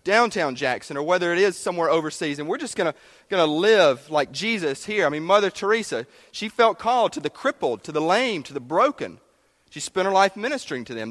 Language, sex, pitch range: English, male, 140-205 Hz